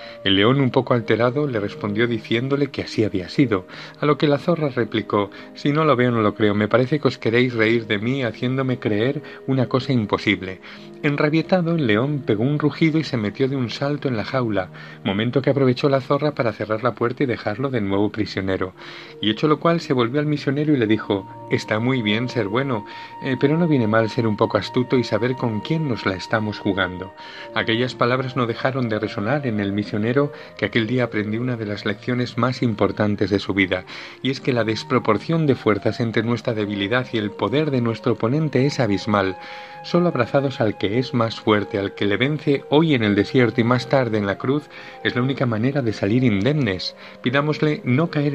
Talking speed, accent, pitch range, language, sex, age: 210 wpm, Spanish, 105-135 Hz, Spanish, male, 40-59